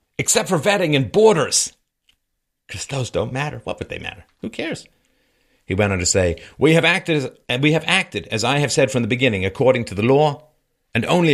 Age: 50-69